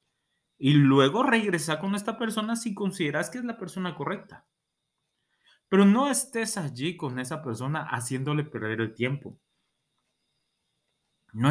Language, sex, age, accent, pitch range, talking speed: Spanish, male, 30-49, Mexican, 125-175 Hz, 130 wpm